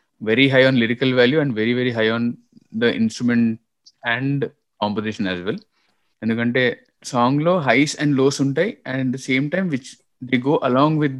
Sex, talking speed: male, 175 wpm